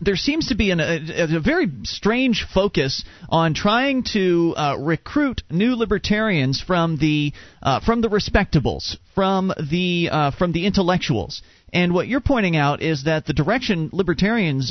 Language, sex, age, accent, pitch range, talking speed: English, male, 40-59, American, 150-220 Hz, 160 wpm